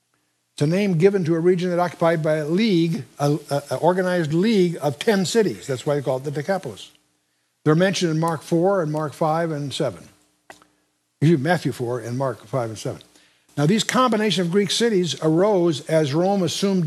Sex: male